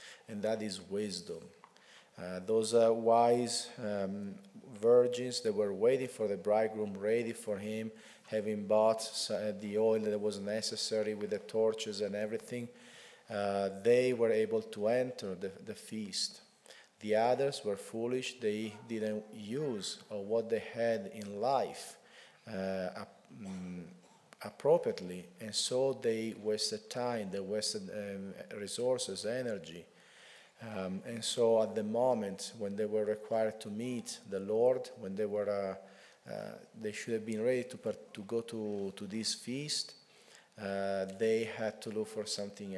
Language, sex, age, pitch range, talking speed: English, male, 40-59, 105-115 Hz, 145 wpm